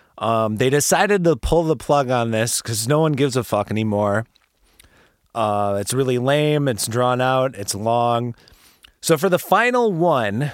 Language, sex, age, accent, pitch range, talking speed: English, male, 30-49, American, 115-150 Hz, 170 wpm